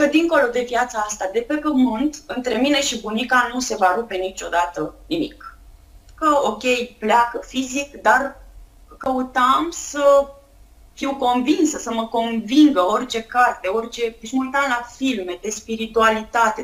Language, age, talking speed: Romanian, 20-39, 135 wpm